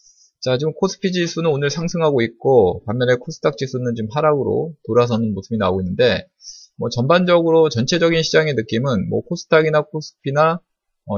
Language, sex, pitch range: Korean, male, 115-165 Hz